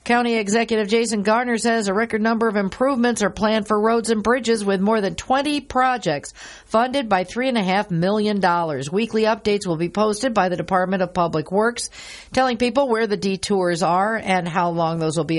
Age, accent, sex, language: 50-69, American, female, English